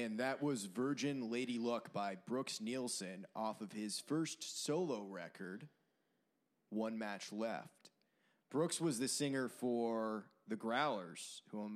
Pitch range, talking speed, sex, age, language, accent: 105-120 Hz, 140 wpm, male, 20-39, English, American